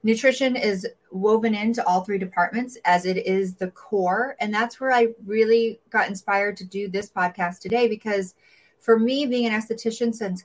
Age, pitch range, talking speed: 30-49, 175-215 Hz, 180 wpm